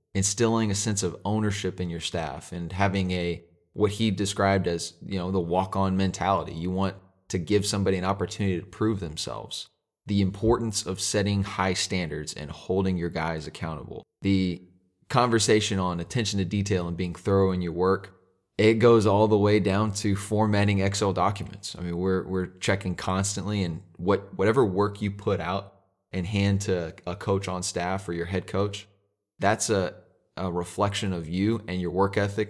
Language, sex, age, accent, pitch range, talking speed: English, male, 20-39, American, 90-105 Hz, 180 wpm